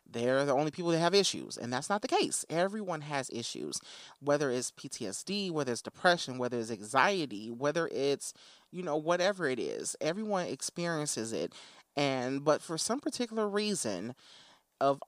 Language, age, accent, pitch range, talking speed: English, 30-49, American, 120-155 Hz, 165 wpm